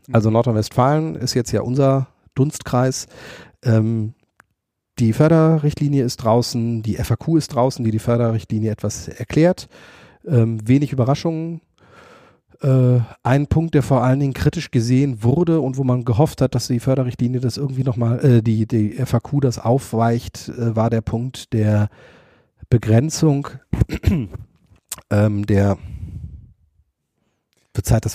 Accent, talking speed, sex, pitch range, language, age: German, 130 wpm, male, 110-135 Hz, German, 40-59